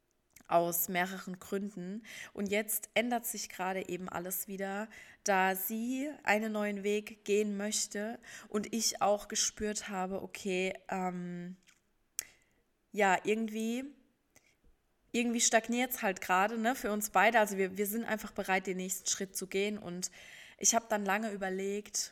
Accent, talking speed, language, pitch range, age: German, 140 wpm, German, 190-225 Hz, 20-39